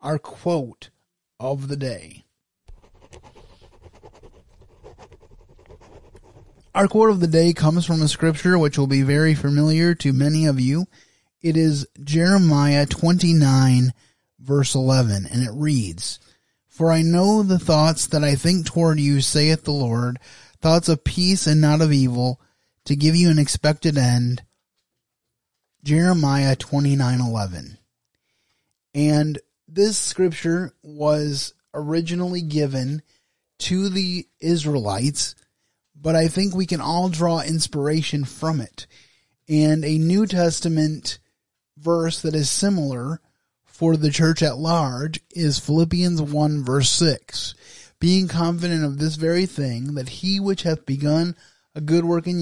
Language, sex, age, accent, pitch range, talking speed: English, male, 30-49, American, 135-165 Hz, 130 wpm